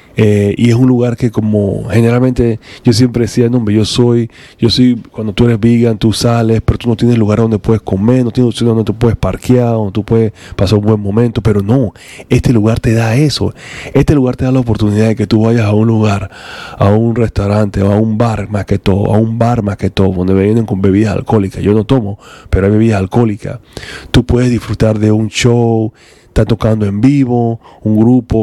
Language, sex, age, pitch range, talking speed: English, male, 30-49, 105-120 Hz, 215 wpm